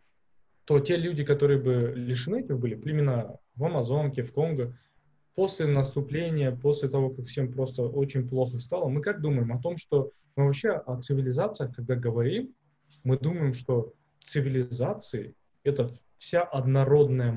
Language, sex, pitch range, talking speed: Russian, male, 120-145 Hz, 150 wpm